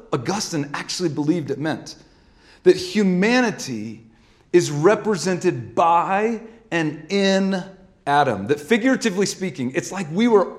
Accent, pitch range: American, 150-195 Hz